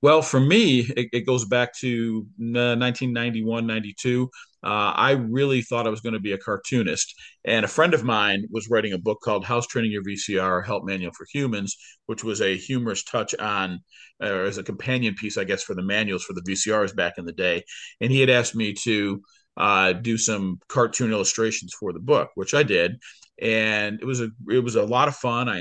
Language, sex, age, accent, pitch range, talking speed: English, male, 40-59, American, 100-125 Hz, 215 wpm